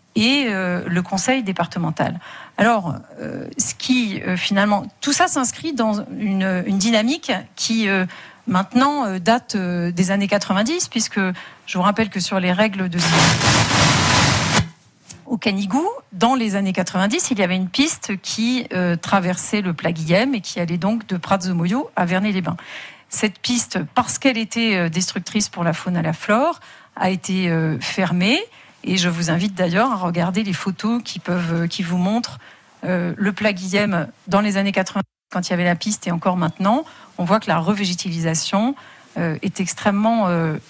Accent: French